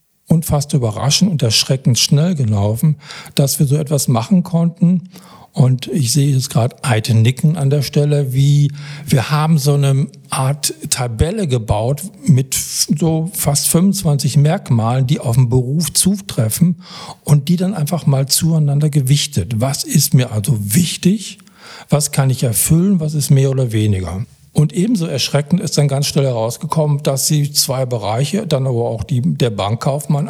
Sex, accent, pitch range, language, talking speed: male, German, 130-160 Hz, German, 160 wpm